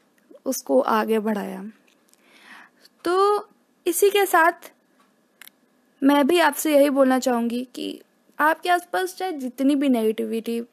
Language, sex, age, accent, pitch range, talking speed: Hindi, female, 20-39, native, 240-295 Hz, 110 wpm